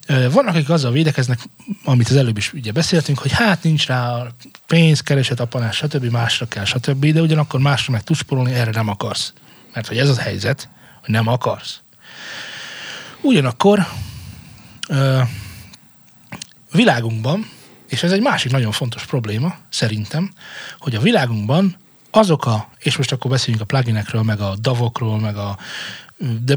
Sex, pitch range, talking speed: male, 115-150 Hz, 145 wpm